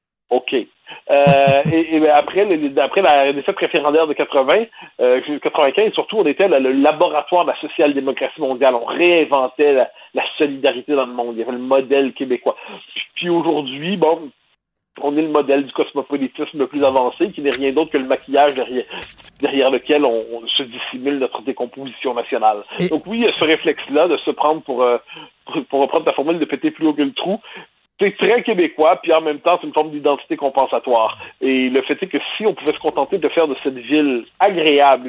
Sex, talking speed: male, 205 wpm